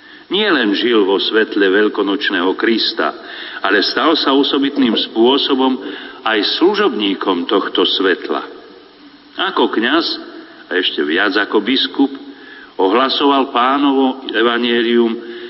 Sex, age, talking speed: male, 50-69, 100 wpm